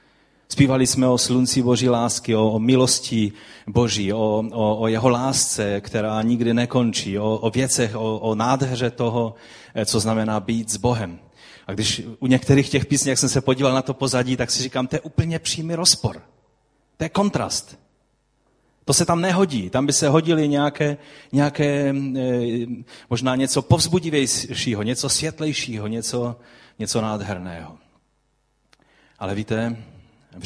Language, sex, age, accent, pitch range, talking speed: Czech, male, 30-49, native, 110-140 Hz, 150 wpm